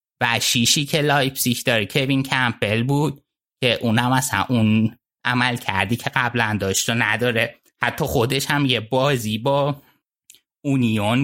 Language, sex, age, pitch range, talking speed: Persian, male, 20-39, 115-140 Hz, 140 wpm